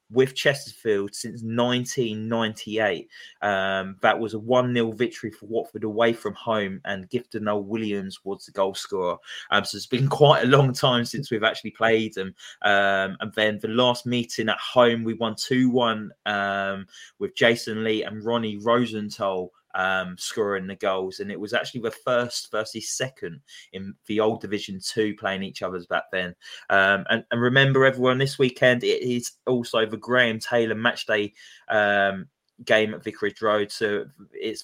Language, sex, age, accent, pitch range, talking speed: English, male, 20-39, British, 100-115 Hz, 160 wpm